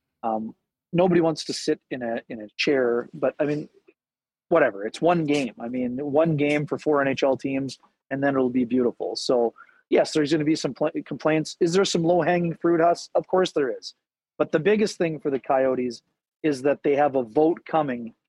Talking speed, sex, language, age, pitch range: 205 wpm, male, English, 30-49, 130-160 Hz